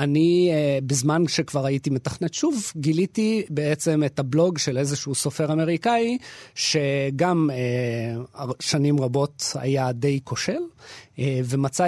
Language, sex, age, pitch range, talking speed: Hebrew, male, 30-49, 130-155 Hz, 115 wpm